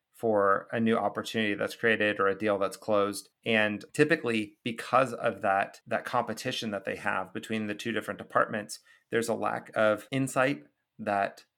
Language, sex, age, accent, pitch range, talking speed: English, male, 30-49, American, 105-115 Hz, 165 wpm